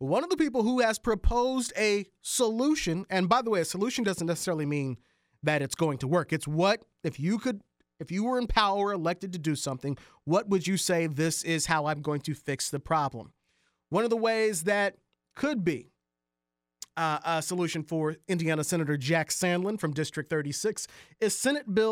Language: English